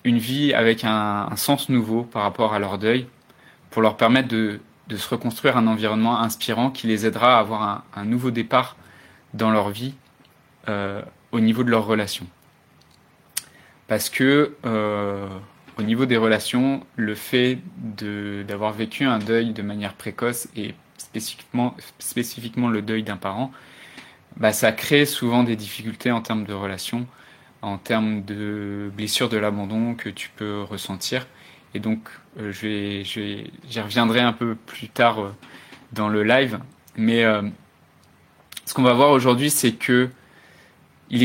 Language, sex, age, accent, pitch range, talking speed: French, male, 20-39, French, 105-125 Hz, 160 wpm